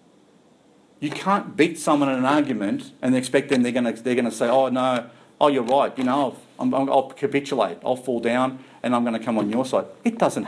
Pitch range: 150-230 Hz